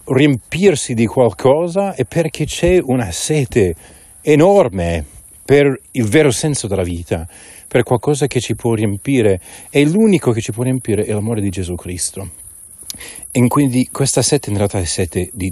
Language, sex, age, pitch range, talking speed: Italian, male, 40-59, 95-125 Hz, 160 wpm